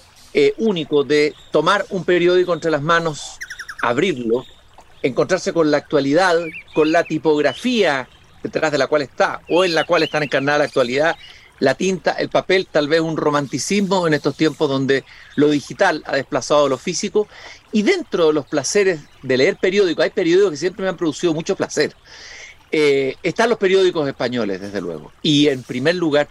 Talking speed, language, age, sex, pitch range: 175 wpm, Spanish, 50-69, male, 150-195 Hz